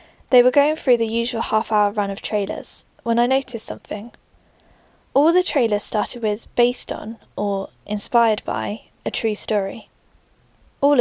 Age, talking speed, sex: 10-29, 155 wpm, female